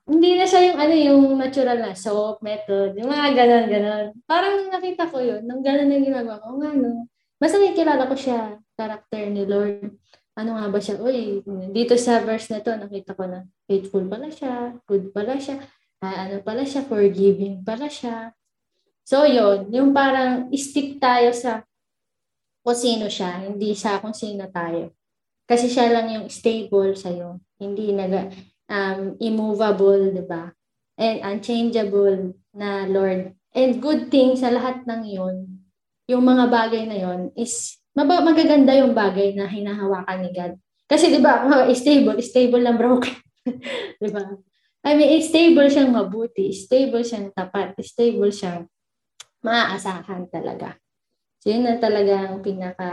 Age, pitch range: 20-39, 195-255 Hz